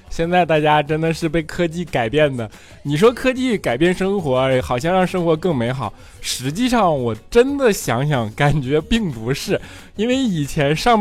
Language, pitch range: Chinese, 130-185 Hz